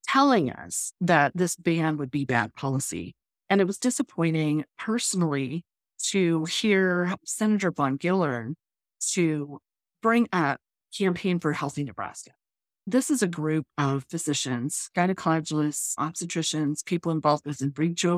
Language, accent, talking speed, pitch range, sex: English, American, 125 wpm, 145-180 Hz, female